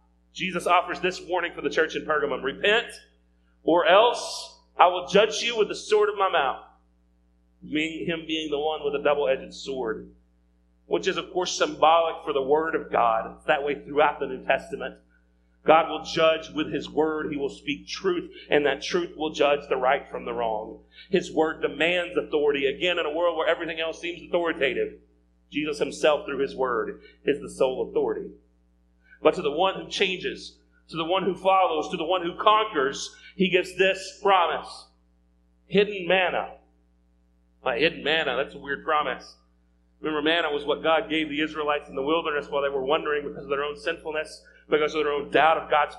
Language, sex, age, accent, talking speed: English, male, 40-59, American, 190 wpm